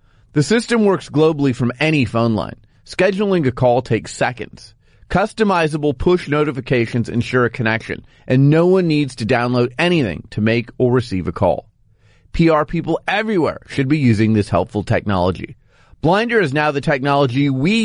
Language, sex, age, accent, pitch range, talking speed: English, male, 30-49, American, 110-155 Hz, 160 wpm